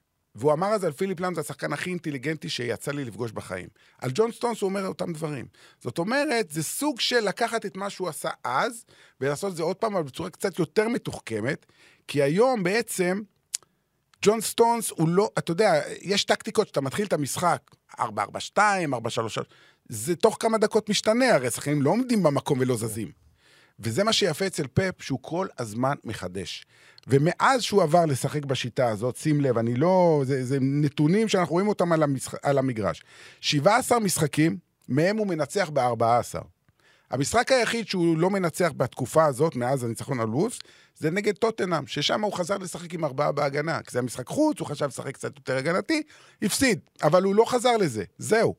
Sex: male